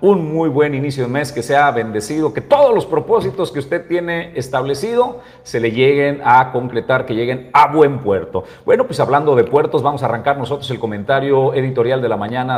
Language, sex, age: Spanish, male, 40-59